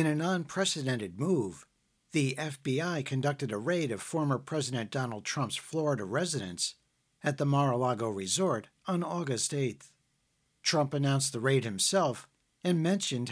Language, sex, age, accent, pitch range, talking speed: English, male, 50-69, American, 115-160 Hz, 135 wpm